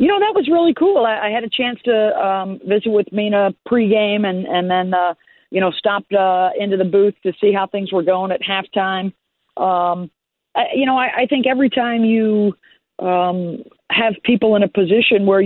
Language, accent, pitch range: English, American, 170-210 Hz